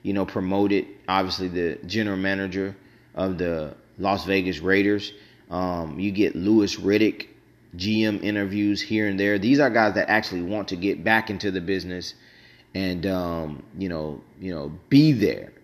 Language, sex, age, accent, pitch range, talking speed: English, male, 30-49, American, 95-110 Hz, 160 wpm